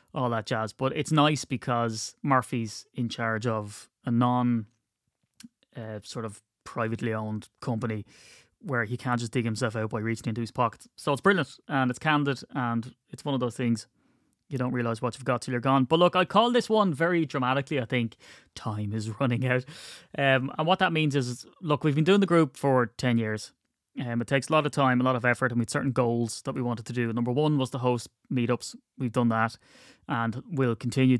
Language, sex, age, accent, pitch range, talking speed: English, male, 20-39, Irish, 115-135 Hz, 220 wpm